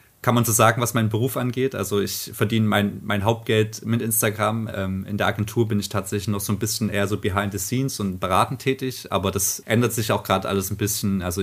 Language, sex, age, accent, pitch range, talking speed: German, male, 30-49, German, 100-115 Hz, 230 wpm